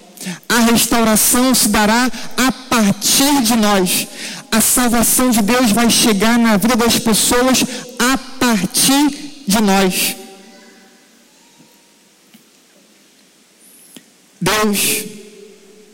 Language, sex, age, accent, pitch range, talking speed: Portuguese, male, 50-69, Brazilian, 185-245 Hz, 85 wpm